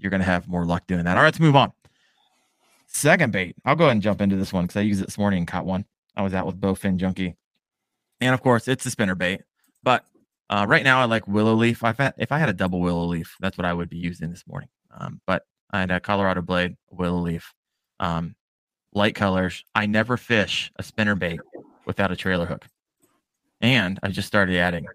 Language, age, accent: English, 20-39, American